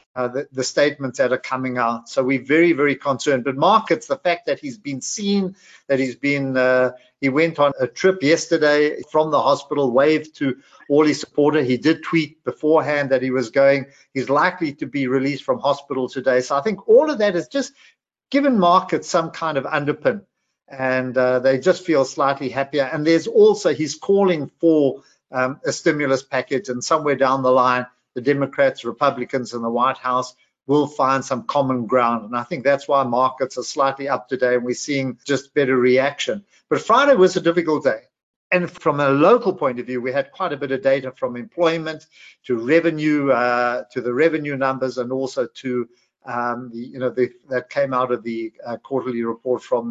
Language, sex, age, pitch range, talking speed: English, male, 50-69, 125-160 Hz, 195 wpm